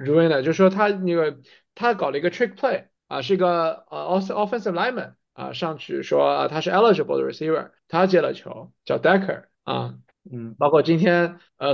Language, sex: Chinese, male